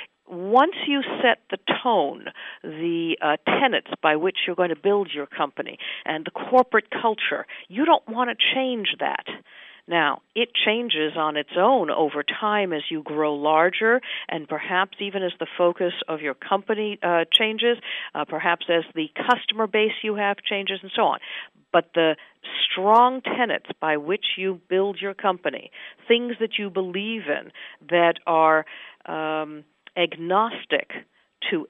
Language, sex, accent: English, female, American